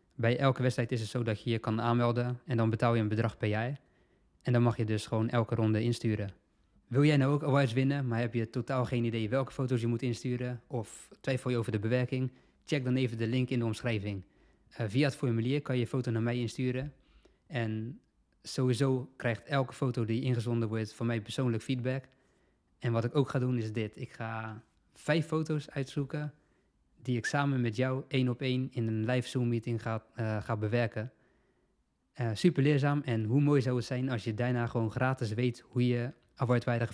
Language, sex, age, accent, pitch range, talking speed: Dutch, male, 20-39, Dutch, 115-130 Hz, 210 wpm